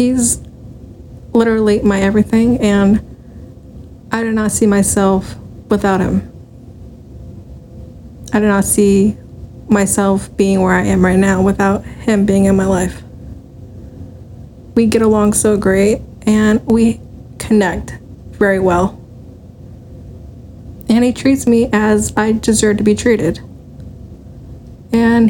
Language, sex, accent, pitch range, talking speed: English, female, American, 185-225 Hz, 120 wpm